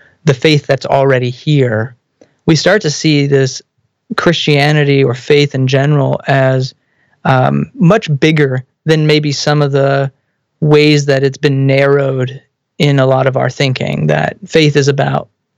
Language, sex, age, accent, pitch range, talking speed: English, male, 30-49, American, 135-155 Hz, 150 wpm